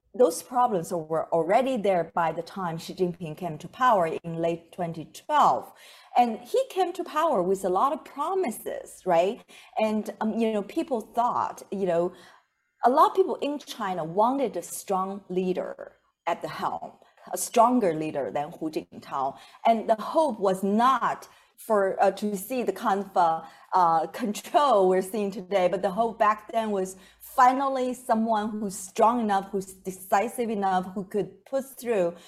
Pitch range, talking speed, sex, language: 175-235 Hz, 165 wpm, female, English